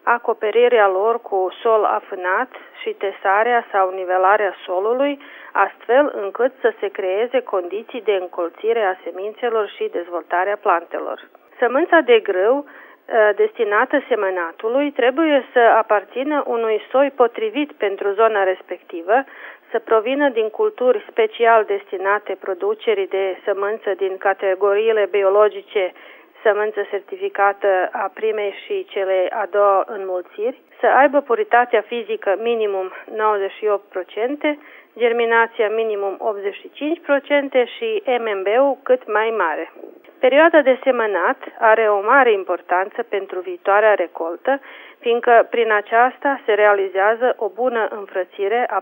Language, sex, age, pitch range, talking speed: Romanian, female, 40-59, 195-265 Hz, 110 wpm